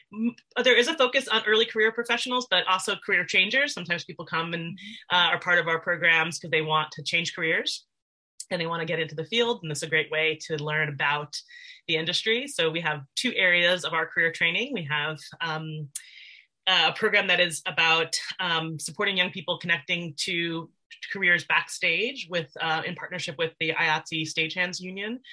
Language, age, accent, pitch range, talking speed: English, 30-49, American, 155-185 Hz, 190 wpm